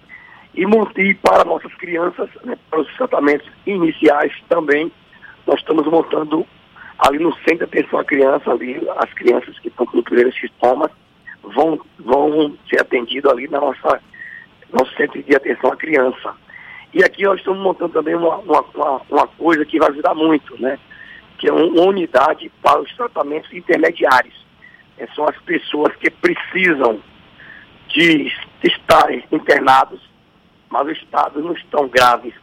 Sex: male